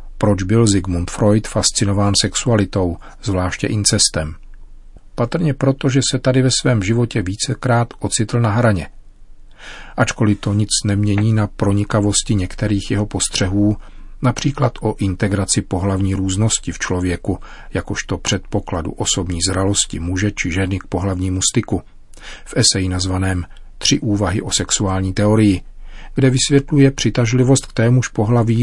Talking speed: 125 wpm